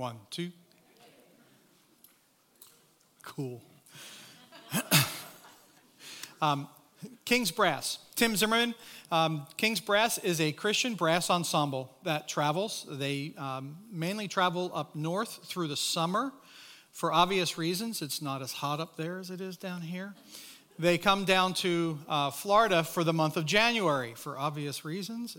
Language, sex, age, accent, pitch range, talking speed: English, male, 40-59, American, 150-185 Hz, 130 wpm